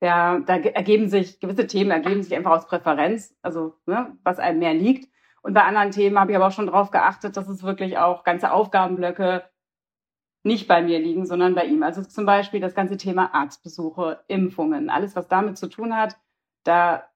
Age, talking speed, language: 40-59, 190 wpm, German